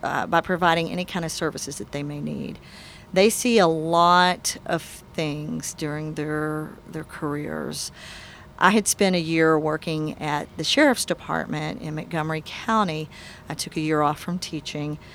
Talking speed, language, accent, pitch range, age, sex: 160 wpm, English, American, 155-185 Hz, 40-59, female